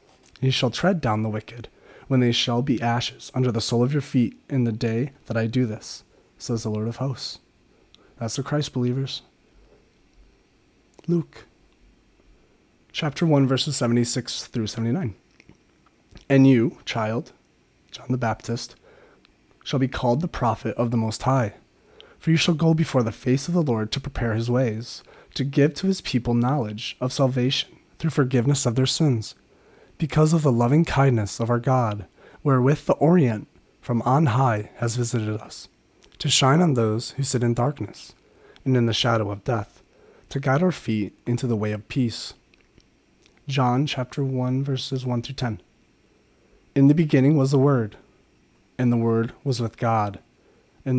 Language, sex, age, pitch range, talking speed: English, male, 30-49, 115-140 Hz, 165 wpm